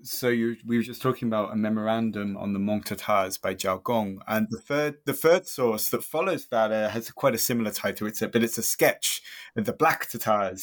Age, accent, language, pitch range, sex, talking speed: 20-39, British, English, 110-145 Hz, male, 235 wpm